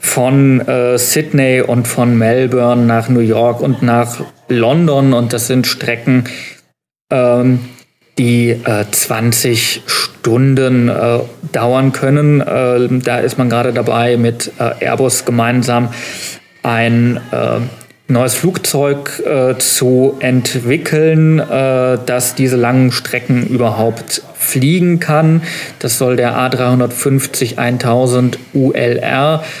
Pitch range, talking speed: 120-145 Hz, 105 wpm